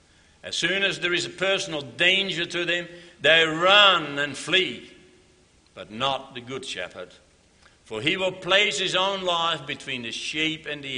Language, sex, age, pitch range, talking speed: English, male, 60-79, 105-175 Hz, 170 wpm